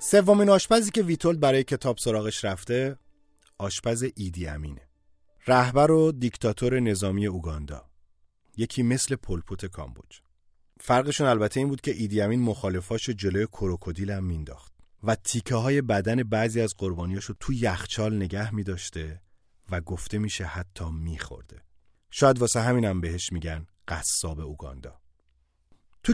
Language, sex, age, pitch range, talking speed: Persian, male, 40-59, 90-125 Hz, 125 wpm